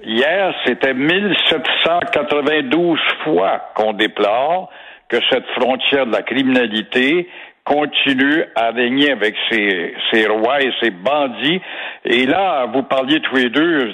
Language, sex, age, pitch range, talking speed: French, male, 60-79, 135-200 Hz, 125 wpm